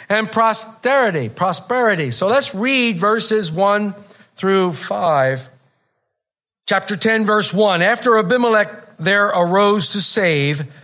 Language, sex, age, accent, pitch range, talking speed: English, male, 50-69, American, 165-225 Hz, 110 wpm